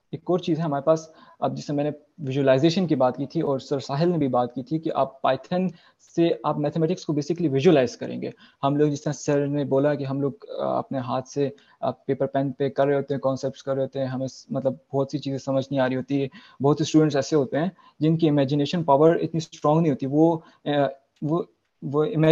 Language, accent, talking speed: English, Indian, 165 wpm